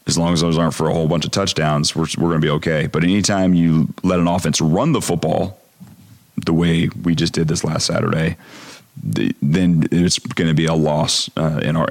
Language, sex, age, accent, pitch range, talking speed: English, male, 30-49, American, 85-100 Hz, 215 wpm